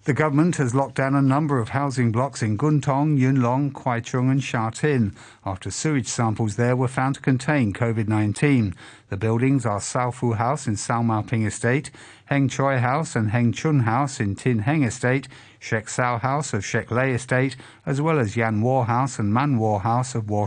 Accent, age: British, 50-69